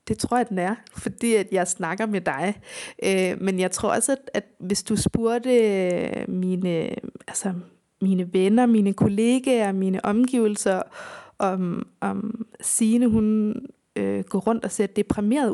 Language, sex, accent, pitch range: Danish, female, native, 190-245 Hz